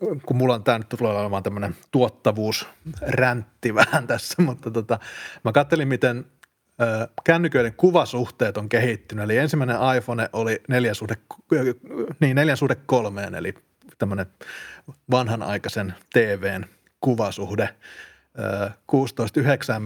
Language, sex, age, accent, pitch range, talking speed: Finnish, male, 30-49, native, 110-135 Hz, 110 wpm